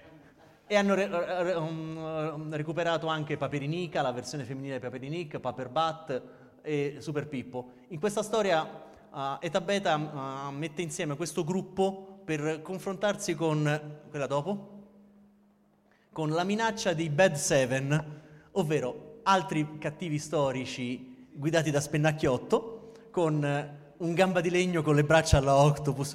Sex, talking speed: male, 130 wpm